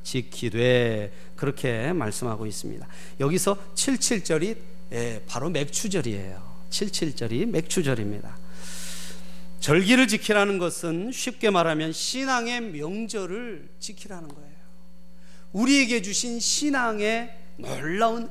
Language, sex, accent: Korean, male, native